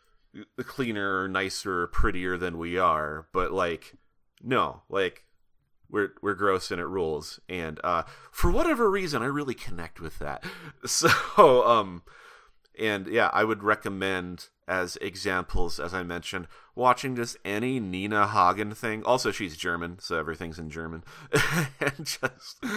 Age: 30-49